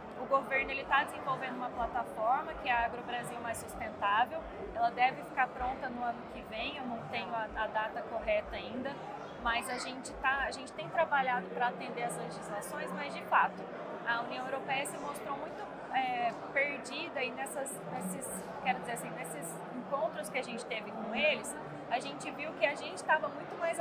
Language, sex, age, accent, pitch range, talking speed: Portuguese, female, 20-39, Brazilian, 240-295 Hz, 185 wpm